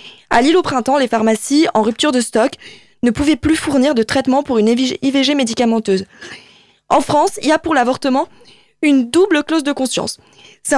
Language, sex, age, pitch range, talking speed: French, female, 20-39, 245-310 Hz, 185 wpm